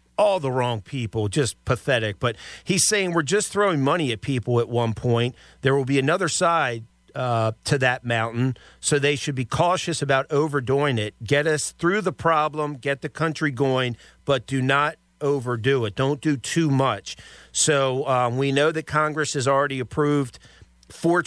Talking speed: 180 wpm